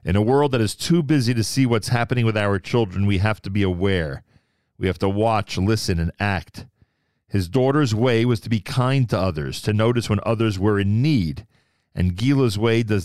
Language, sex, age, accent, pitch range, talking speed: English, male, 40-59, American, 95-120 Hz, 210 wpm